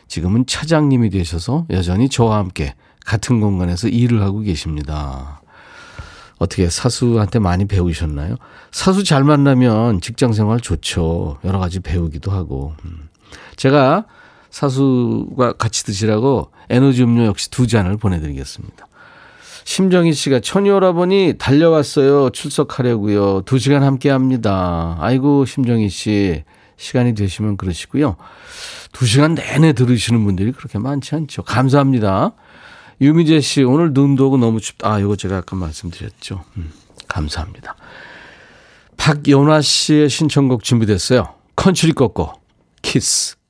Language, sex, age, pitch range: Korean, male, 40-59, 95-140 Hz